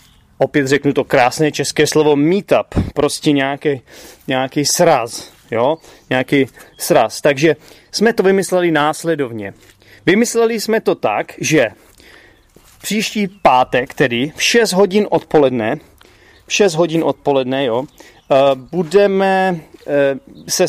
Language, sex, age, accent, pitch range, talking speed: Czech, male, 30-49, native, 140-175 Hz, 110 wpm